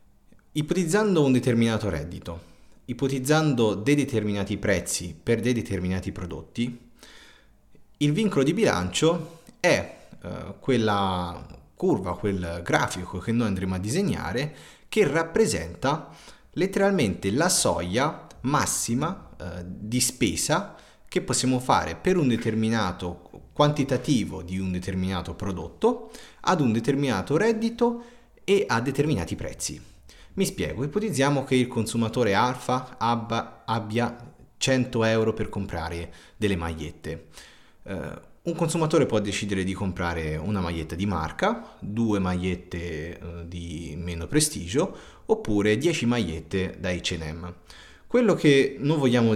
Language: Italian